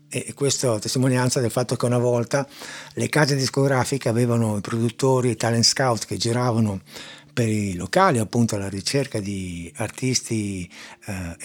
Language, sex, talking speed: Italian, male, 145 wpm